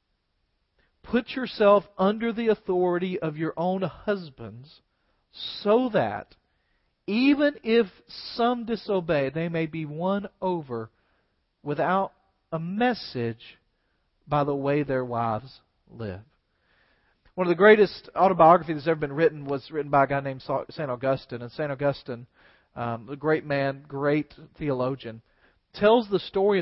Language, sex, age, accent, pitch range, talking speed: English, male, 40-59, American, 130-200 Hz, 130 wpm